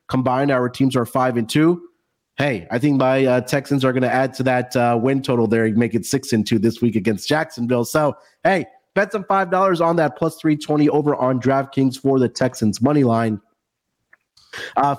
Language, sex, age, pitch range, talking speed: English, male, 30-49, 125-165 Hz, 190 wpm